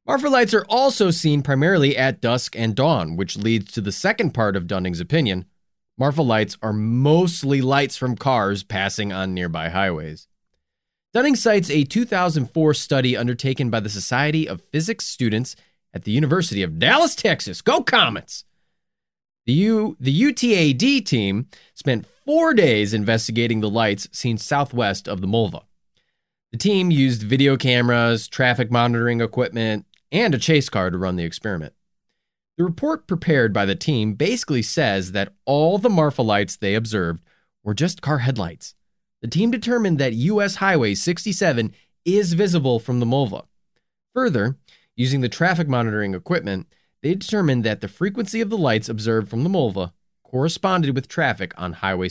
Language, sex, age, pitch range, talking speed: English, male, 30-49, 110-170 Hz, 155 wpm